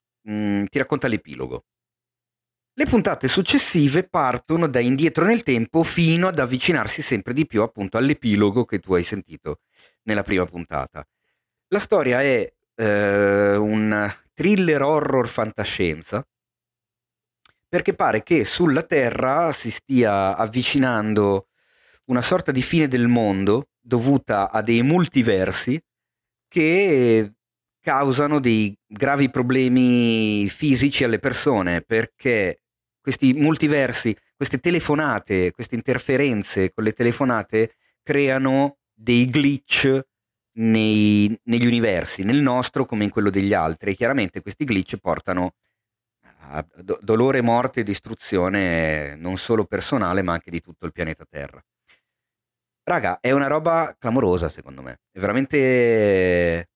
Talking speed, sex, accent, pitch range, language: 115 wpm, male, native, 105-140 Hz, Italian